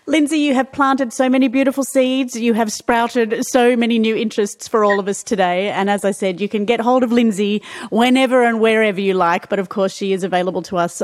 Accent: Australian